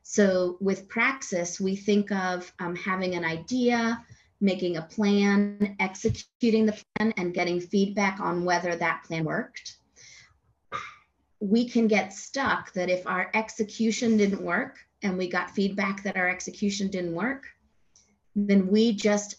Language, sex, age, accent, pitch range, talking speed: English, female, 30-49, American, 170-205 Hz, 140 wpm